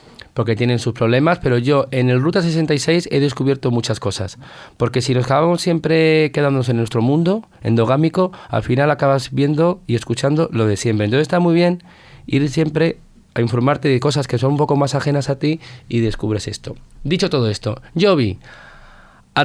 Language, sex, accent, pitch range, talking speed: Spanish, male, Spanish, 120-150 Hz, 185 wpm